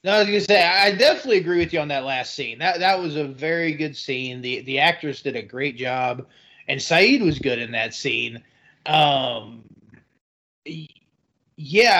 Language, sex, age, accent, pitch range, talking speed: English, male, 30-49, American, 130-160 Hz, 175 wpm